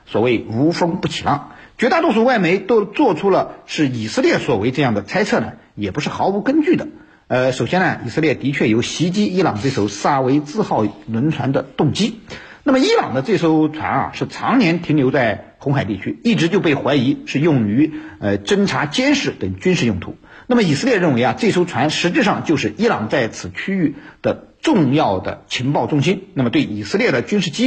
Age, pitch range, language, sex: 50-69, 125-195 Hz, Chinese, male